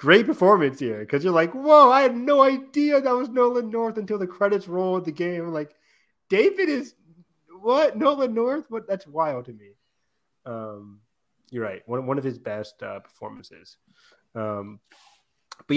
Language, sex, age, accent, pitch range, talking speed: English, male, 30-49, American, 115-160 Hz, 170 wpm